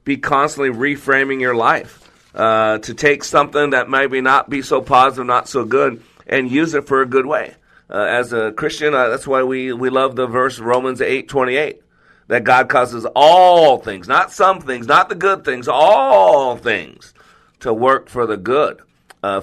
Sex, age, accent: male, 50-69, American